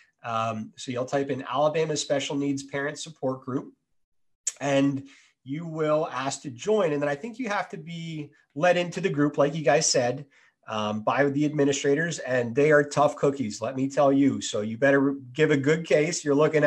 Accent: American